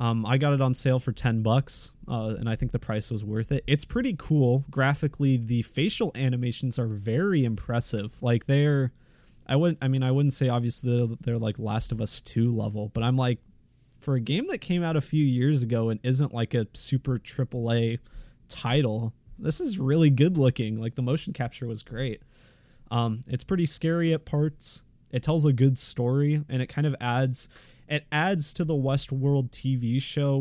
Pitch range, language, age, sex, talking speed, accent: 110-135 Hz, English, 20-39, male, 195 wpm, American